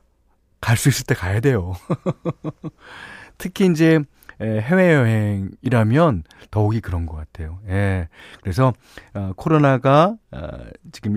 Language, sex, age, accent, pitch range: Korean, male, 40-59, native, 95-135 Hz